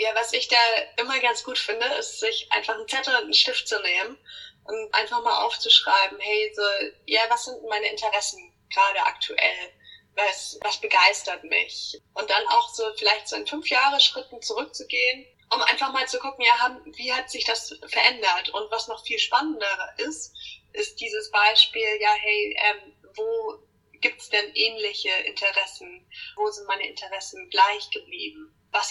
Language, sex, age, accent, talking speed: German, female, 20-39, German, 170 wpm